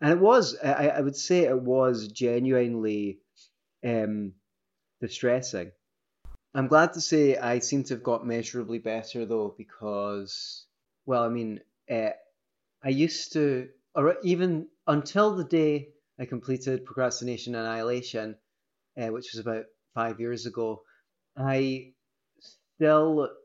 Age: 30-49